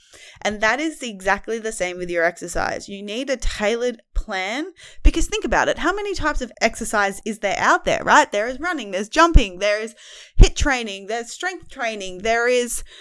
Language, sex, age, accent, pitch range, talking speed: English, female, 20-39, Australian, 195-275 Hz, 195 wpm